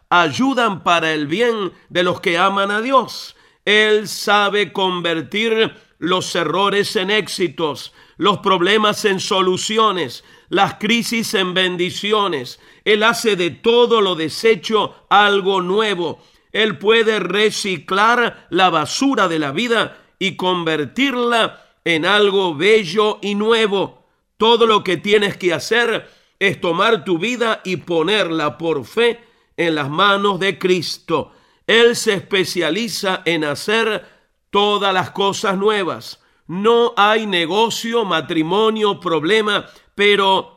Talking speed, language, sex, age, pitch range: 120 wpm, Spanish, male, 50-69, 180-220 Hz